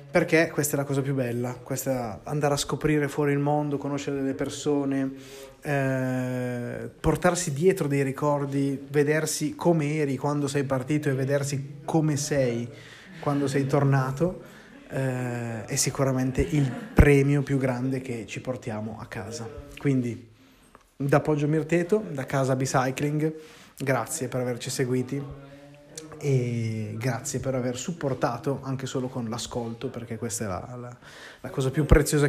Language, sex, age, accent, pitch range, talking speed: Italian, male, 20-39, native, 125-145 Hz, 140 wpm